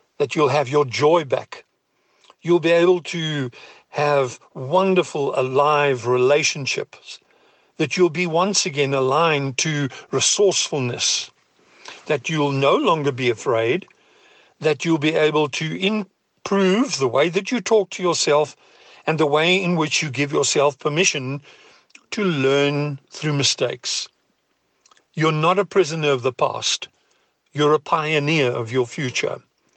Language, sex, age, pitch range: English, male, 50-69, 135-180 Hz